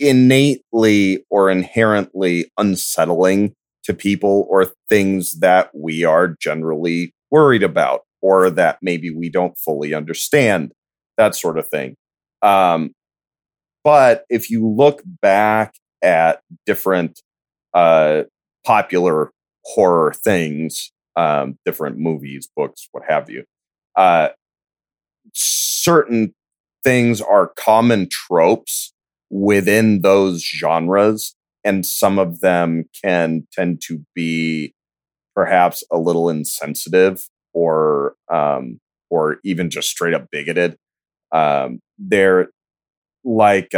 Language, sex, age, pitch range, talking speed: English, male, 30-49, 80-100 Hz, 105 wpm